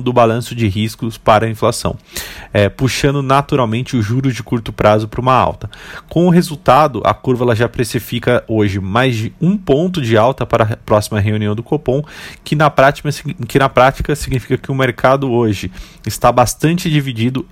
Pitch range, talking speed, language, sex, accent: 110-140 Hz, 180 wpm, Portuguese, male, Brazilian